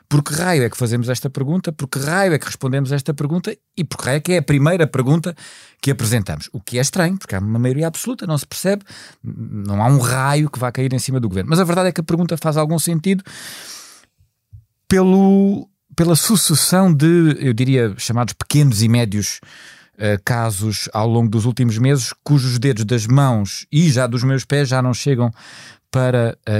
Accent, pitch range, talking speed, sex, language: Portuguese, 110-145 Hz, 200 wpm, male, Portuguese